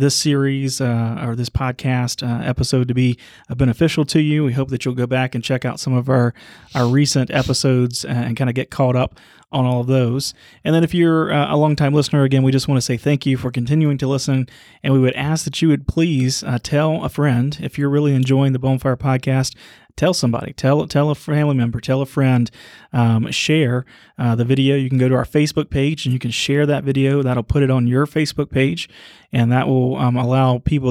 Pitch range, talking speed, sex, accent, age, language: 125-145 Hz, 225 wpm, male, American, 30-49, English